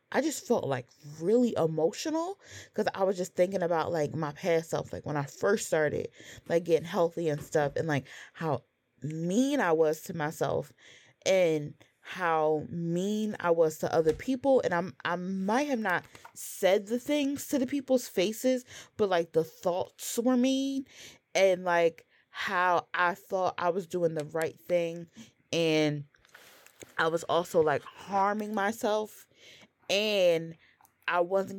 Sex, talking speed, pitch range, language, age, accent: female, 155 wpm, 155-195 Hz, English, 20-39, American